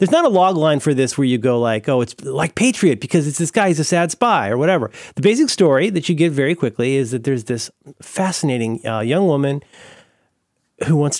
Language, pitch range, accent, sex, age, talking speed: English, 110-140 Hz, American, male, 30-49, 230 wpm